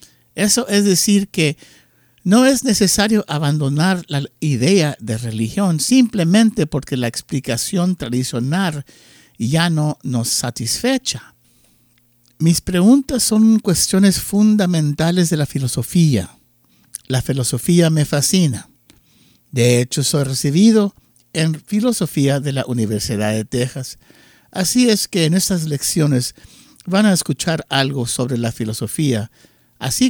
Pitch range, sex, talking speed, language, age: 120-185 Hz, male, 115 wpm, English, 60-79